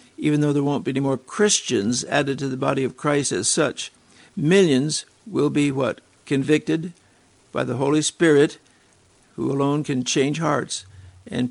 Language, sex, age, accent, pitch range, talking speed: English, male, 60-79, American, 130-155 Hz, 160 wpm